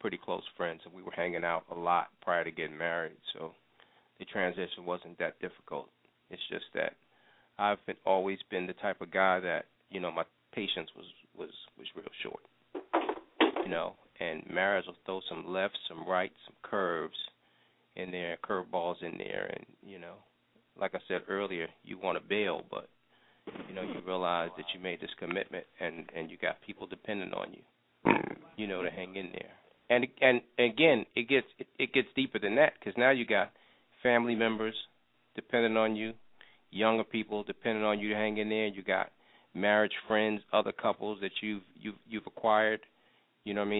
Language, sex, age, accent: English, male, 30-49, American